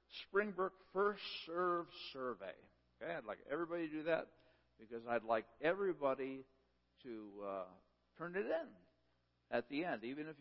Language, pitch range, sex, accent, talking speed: English, 95-145 Hz, male, American, 145 wpm